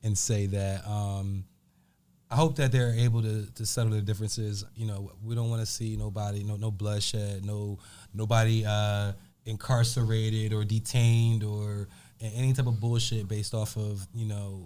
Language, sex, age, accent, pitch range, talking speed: English, male, 20-39, American, 100-115 Hz, 170 wpm